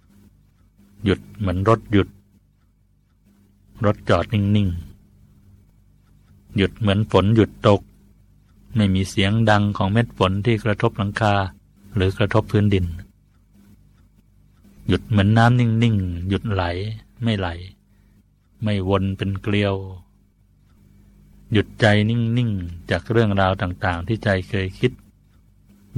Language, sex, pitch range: Thai, male, 95-110 Hz